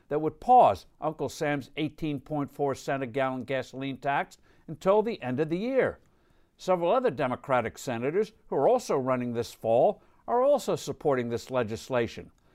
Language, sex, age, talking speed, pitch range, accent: English, male, 60-79, 145 wpm, 135-190 Hz, American